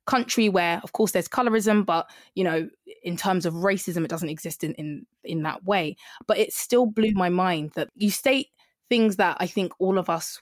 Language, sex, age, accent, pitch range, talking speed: English, female, 20-39, British, 180-220 Hz, 215 wpm